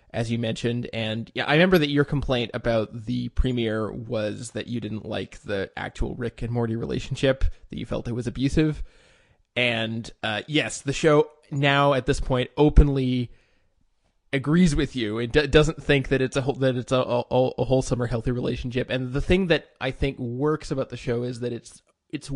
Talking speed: 200 wpm